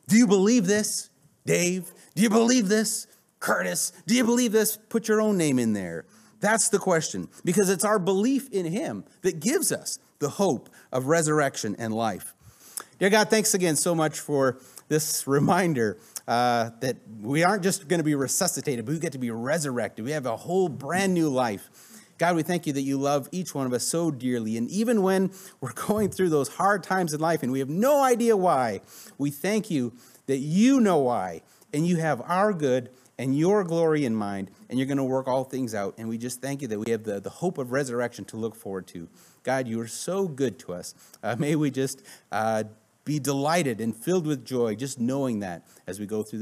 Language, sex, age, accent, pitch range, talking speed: English, male, 30-49, American, 120-190 Hz, 210 wpm